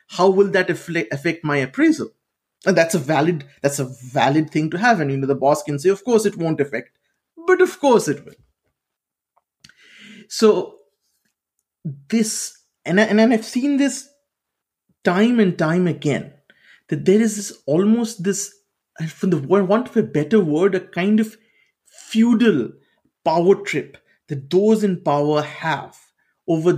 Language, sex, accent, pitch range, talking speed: English, male, Indian, 150-210 Hz, 160 wpm